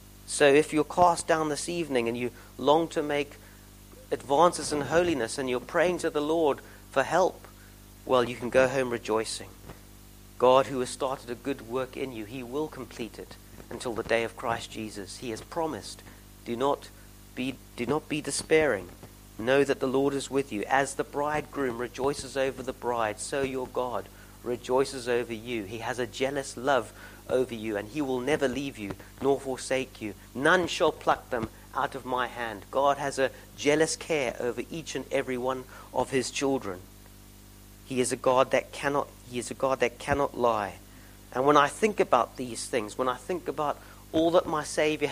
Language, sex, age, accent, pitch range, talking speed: English, male, 40-59, British, 105-140 Hz, 190 wpm